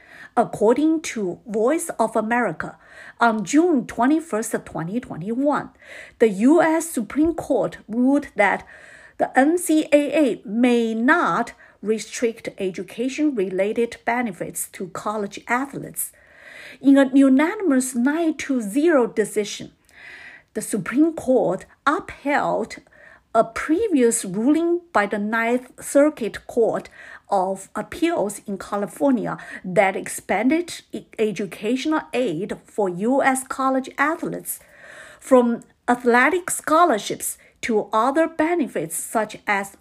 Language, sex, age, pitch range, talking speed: English, female, 50-69, 220-300 Hz, 95 wpm